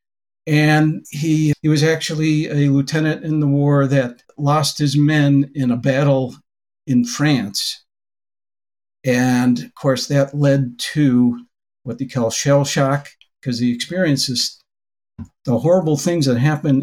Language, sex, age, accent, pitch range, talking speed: English, male, 60-79, American, 135-160 Hz, 135 wpm